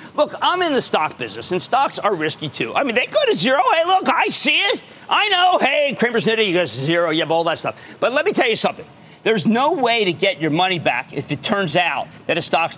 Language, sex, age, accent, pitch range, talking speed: English, male, 50-69, American, 170-245 Hz, 265 wpm